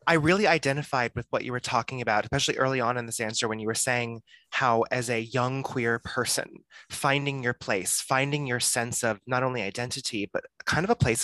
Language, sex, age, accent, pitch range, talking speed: English, male, 20-39, American, 110-135 Hz, 215 wpm